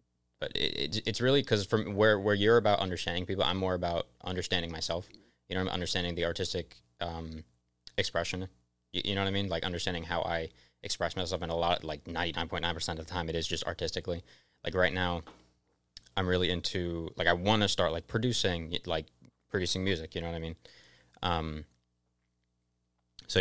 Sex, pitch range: male, 80-100 Hz